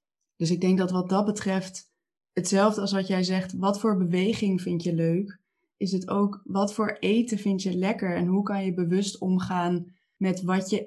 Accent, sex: Dutch, female